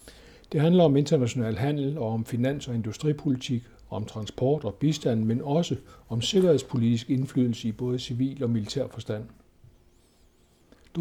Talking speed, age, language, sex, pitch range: 140 wpm, 60-79, Danish, male, 115-135 Hz